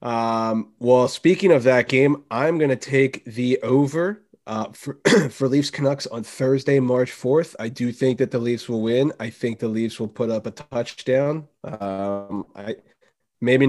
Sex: male